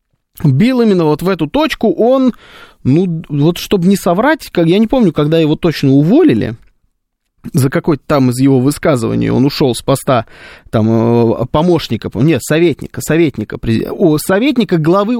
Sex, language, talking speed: male, Russian, 140 wpm